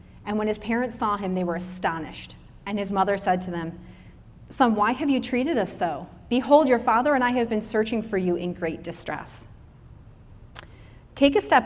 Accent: American